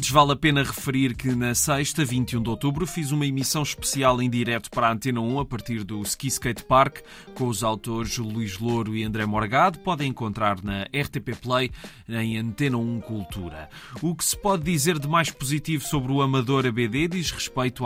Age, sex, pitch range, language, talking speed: 20-39, male, 115-145 Hz, Portuguese, 190 wpm